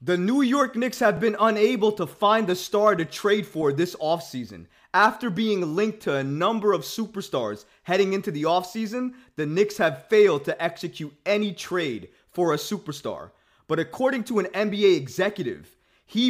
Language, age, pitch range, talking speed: English, 20-39, 150-215 Hz, 170 wpm